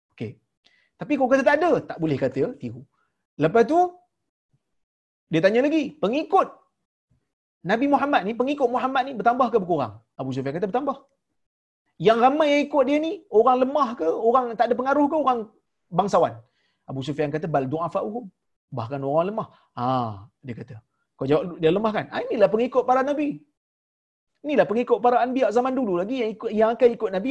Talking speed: 170 wpm